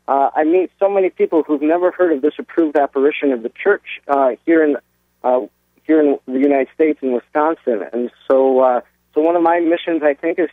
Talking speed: 215 wpm